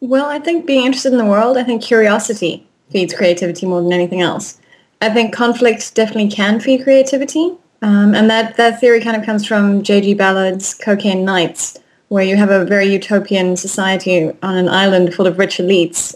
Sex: female